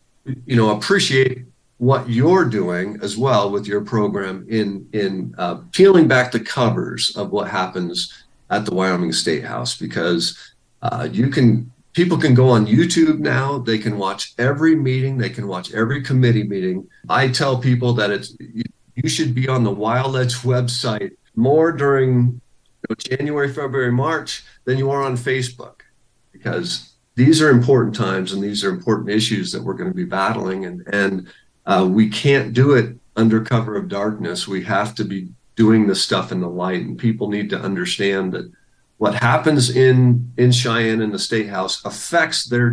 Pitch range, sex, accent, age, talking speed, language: 105-130 Hz, male, American, 50-69, 175 wpm, English